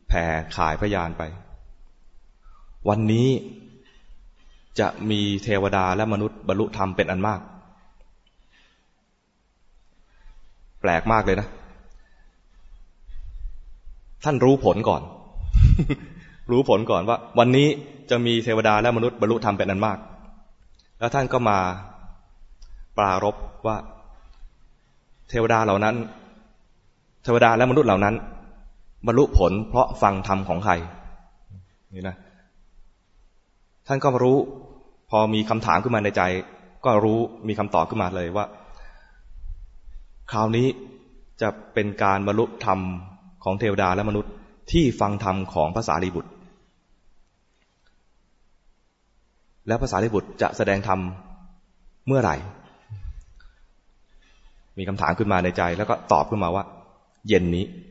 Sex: male